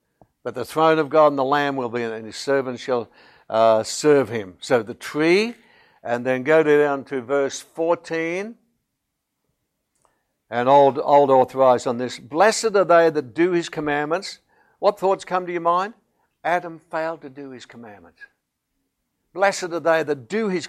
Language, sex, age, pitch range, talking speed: English, male, 60-79, 125-160 Hz, 170 wpm